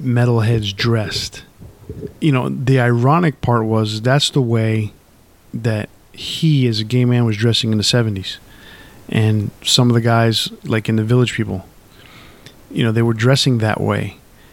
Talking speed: 160 wpm